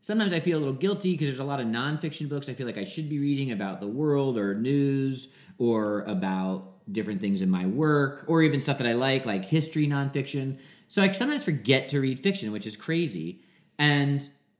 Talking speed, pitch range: 215 wpm, 110-150 Hz